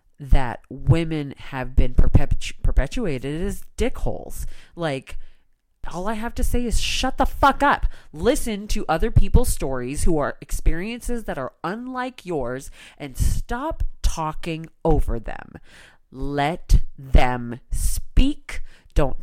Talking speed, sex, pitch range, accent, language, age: 120 wpm, female, 130-195 Hz, American, English, 30-49